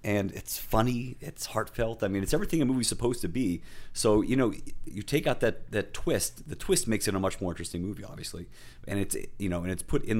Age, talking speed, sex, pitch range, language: 30-49, 240 wpm, male, 90-105 Hz, English